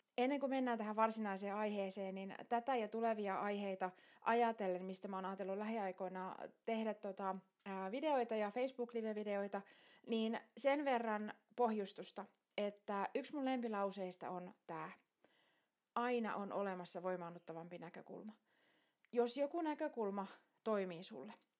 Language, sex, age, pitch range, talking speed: Finnish, female, 30-49, 185-240 Hz, 120 wpm